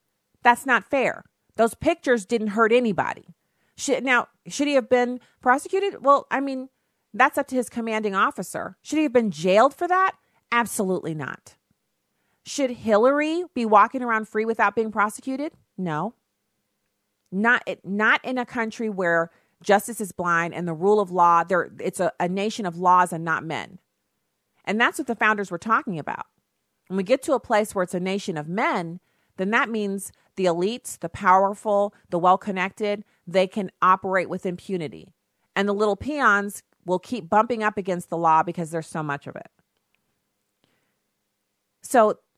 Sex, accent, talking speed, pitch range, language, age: female, American, 165 wpm, 170-230 Hz, English, 40-59